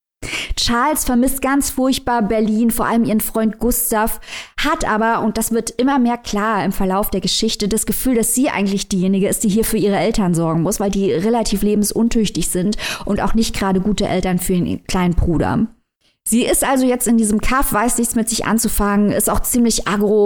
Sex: female